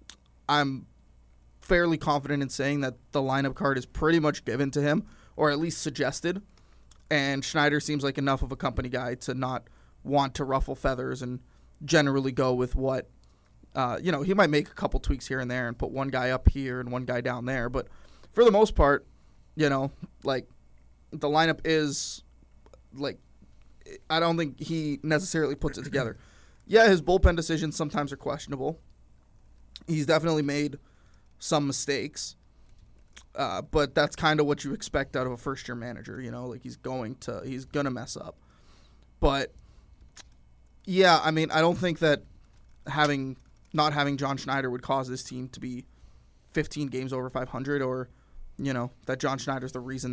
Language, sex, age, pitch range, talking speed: English, male, 20-39, 125-150 Hz, 175 wpm